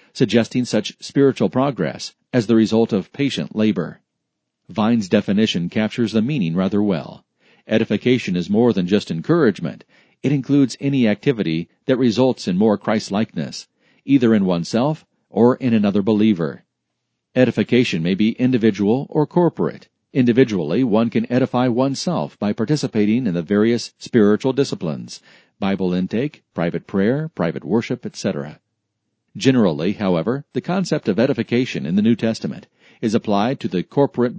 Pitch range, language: 105-140 Hz, English